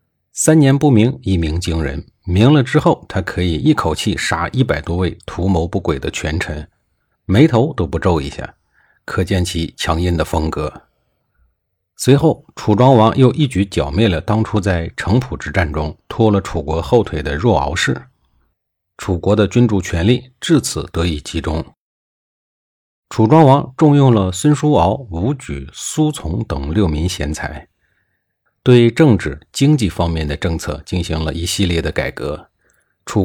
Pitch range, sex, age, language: 80-115 Hz, male, 50-69, Chinese